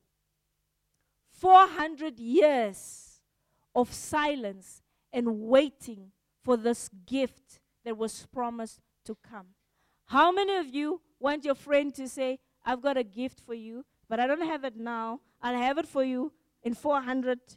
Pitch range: 225-295 Hz